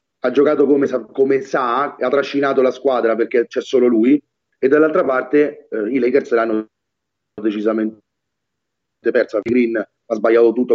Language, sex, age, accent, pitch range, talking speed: Italian, male, 30-49, native, 115-150 Hz, 140 wpm